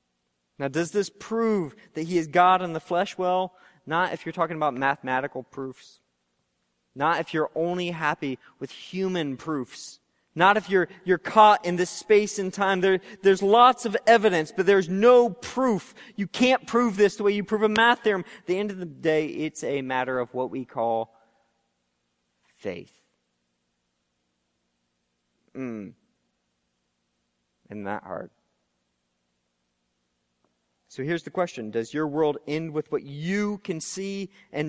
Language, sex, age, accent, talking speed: English, male, 30-49, American, 155 wpm